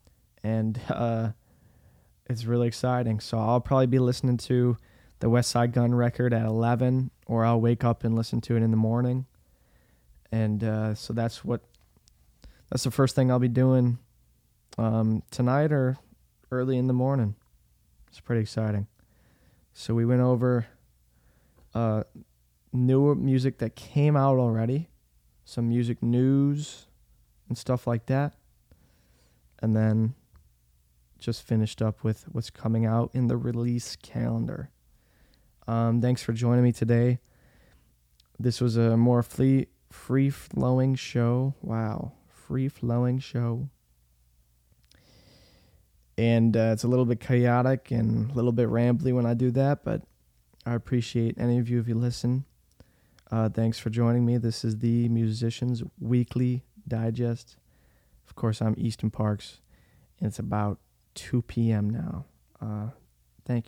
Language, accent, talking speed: English, American, 135 wpm